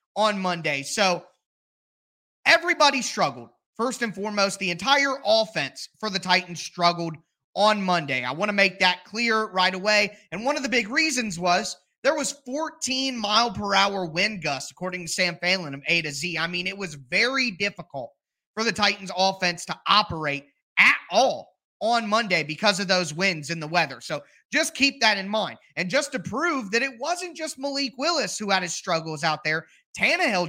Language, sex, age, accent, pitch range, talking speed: English, male, 20-39, American, 180-235 Hz, 185 wpm